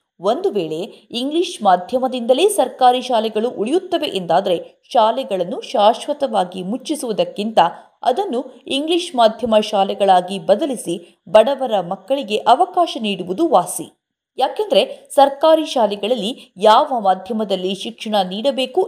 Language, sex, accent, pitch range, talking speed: Kannada, female, native, 205-300 Hz, 90 wpm